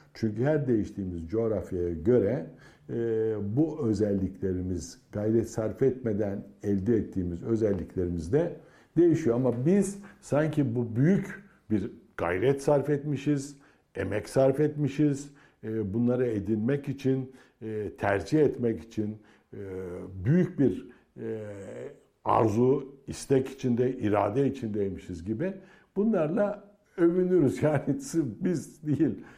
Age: 60-79